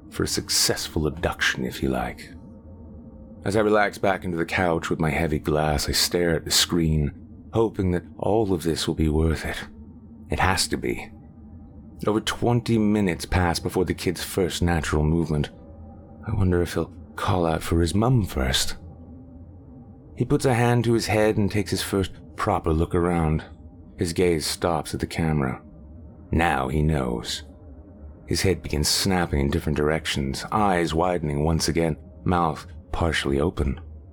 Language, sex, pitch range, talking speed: English, male, 75-90 Hz, 165 wpm